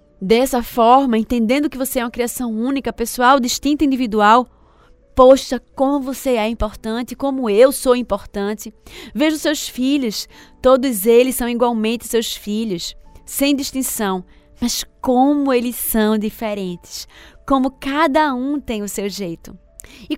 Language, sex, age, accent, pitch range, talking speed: Portuguese, female, 20-39, Brazilian, 220-280 Hz, 135 wpm